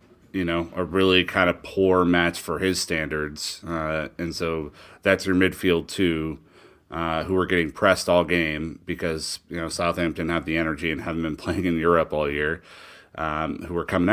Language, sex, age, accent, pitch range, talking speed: English, male, 30-49, American, 85-95 Hz, 185 wpm